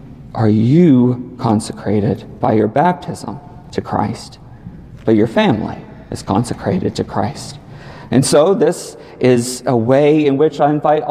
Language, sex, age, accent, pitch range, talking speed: English, male, 40-59, American, 110-135 Hz, 135 wpm